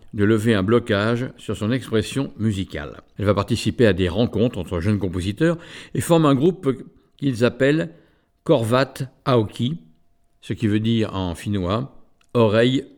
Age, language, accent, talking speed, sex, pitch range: 50-69, French, French, 155 wpm, male, 100-130 Hz